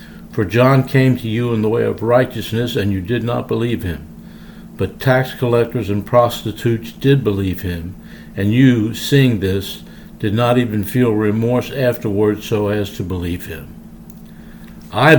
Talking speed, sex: 160 wpm, male